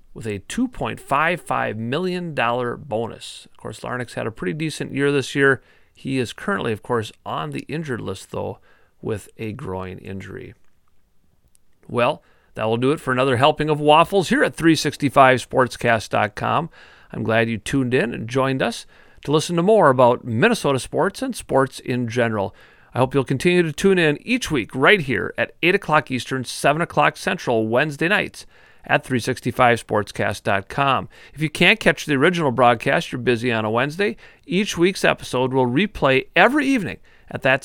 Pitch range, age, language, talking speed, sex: 120-155 Hz, 40-59, English, 165 wpm, male